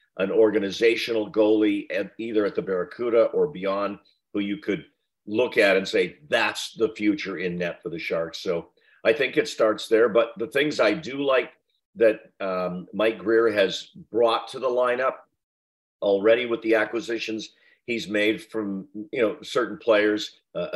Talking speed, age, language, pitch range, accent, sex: 170 wpm, 50-69, English, 95-125 Hz, American, male